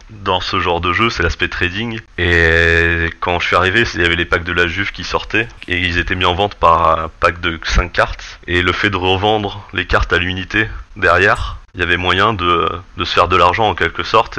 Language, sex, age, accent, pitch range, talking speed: French, male, 30-49, French, 85-100 Hz, 240 wpm